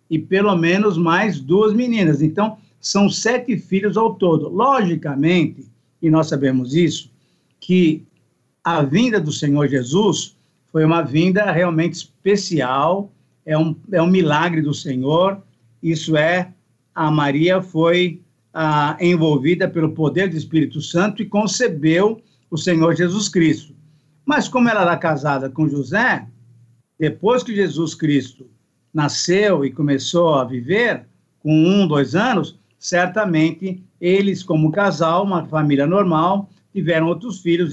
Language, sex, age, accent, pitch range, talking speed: Portuguese, male, 50-69, Brazilian, 155-195 Hz, 130 wpm